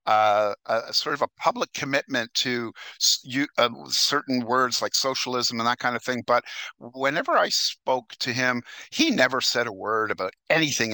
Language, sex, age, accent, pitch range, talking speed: English, male, 50-69, American, 110-125 Hz, 185 wpm